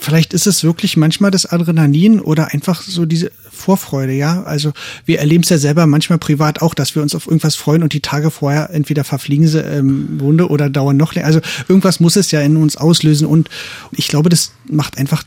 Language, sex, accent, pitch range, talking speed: German, male, German, 145-165 Hz, 215 wpm